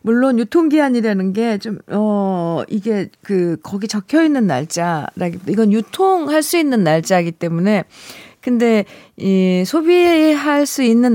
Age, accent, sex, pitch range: 40-59, native, female, 190-255 Hz